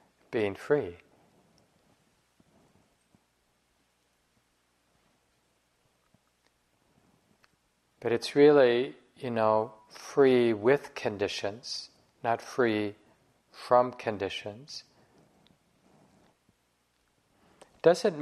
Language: English